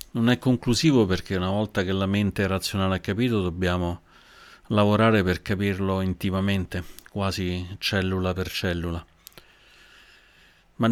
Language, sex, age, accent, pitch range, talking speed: Italian, male, 40-59, native, 90-105 Hz, 120 wpm